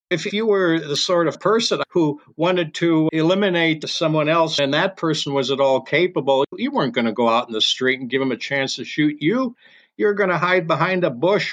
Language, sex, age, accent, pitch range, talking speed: English, male, 60-79, American, 140-175 Hz, 230 wpm